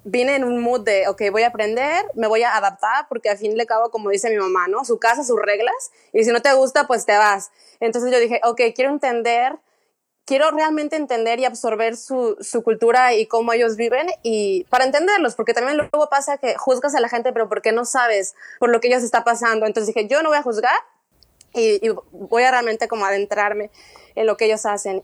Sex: female